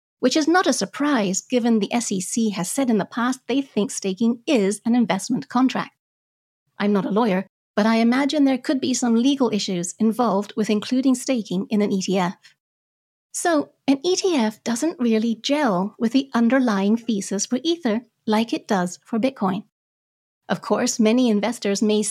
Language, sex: English, female